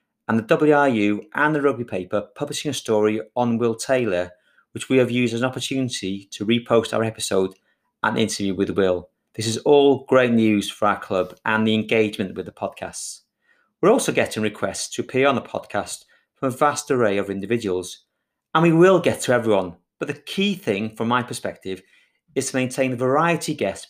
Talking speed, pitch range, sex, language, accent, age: 195 wpm, 105-145 Hz, male, English, British, 30-49